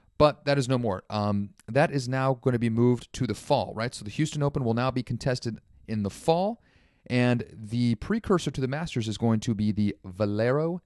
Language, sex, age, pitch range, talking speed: English, male, 30-49, 105-140 Hz, 220 wpm